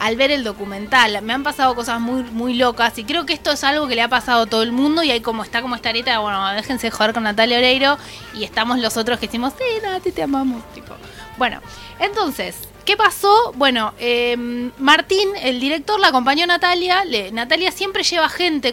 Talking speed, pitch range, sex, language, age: 220 wpm, 225-310 Hz, female, Spanish, 20-39